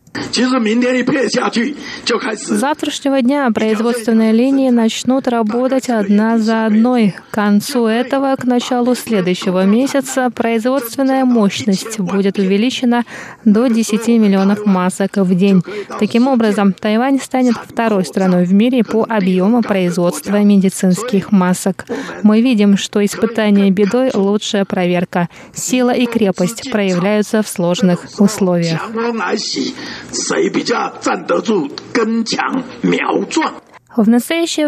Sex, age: female, 20-39